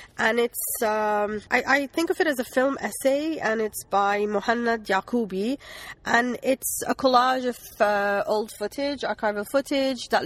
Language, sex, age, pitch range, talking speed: English, female, 30-49, 175-215 Hz, 165 wpm